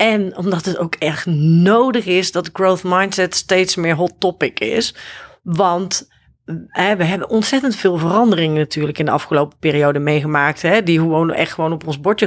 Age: 40-59